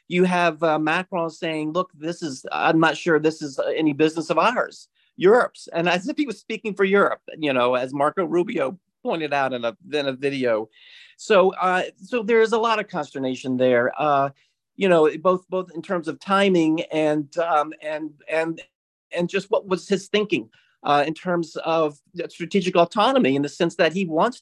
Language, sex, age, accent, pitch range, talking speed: English, male, 40-59, American, 150-190 Hz, 195 wpm